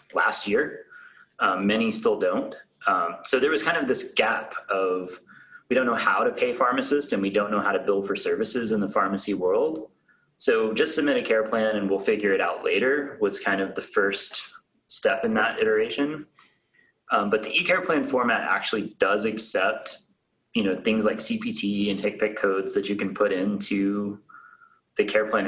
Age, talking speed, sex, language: 30-49, 190 wpm, male, English